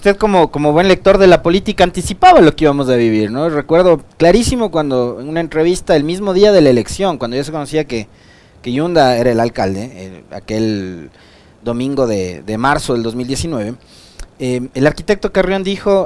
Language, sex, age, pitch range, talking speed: Spanish, male, 30-49, 135-185 Hz, 185 wpm